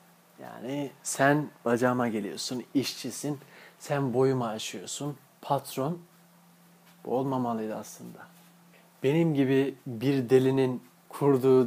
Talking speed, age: 85 wpm, 40-59